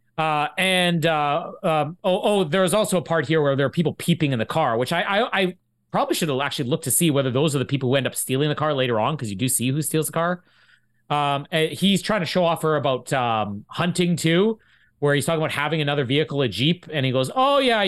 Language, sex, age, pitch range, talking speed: English, male, 30-49, 140-185 Hz, 260 wpm